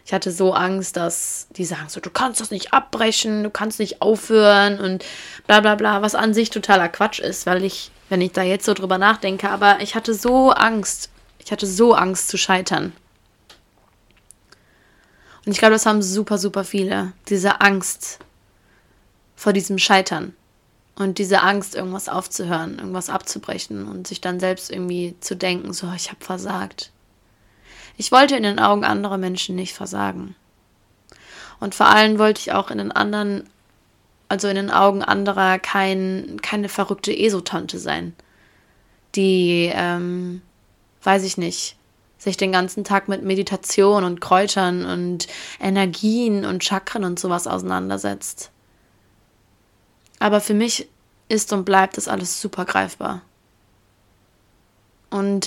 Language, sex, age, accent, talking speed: German, female, 20-39, German, 150 wpm